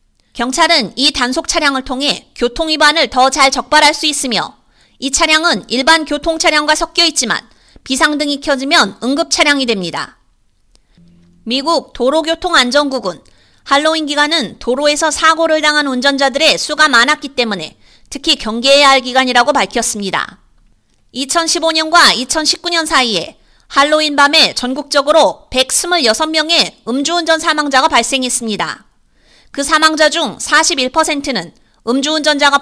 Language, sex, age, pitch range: Korean, female, 30-49, 255-320 Hz